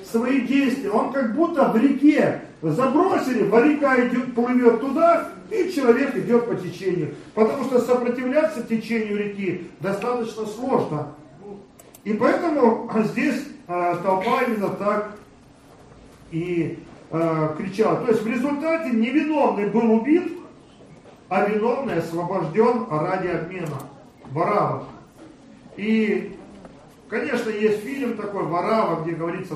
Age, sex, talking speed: 40-59, male, 110 wpm